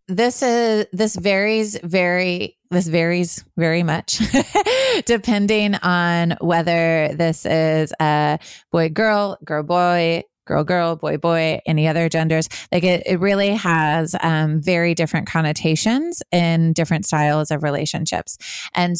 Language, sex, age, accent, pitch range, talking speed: English, female, 20-39, American, 165-190 Hz, 130 wpm